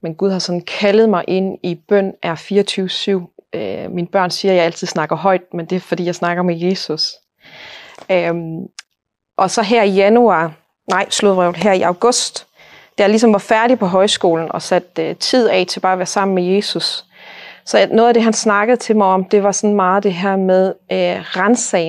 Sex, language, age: female, Danish, 30-49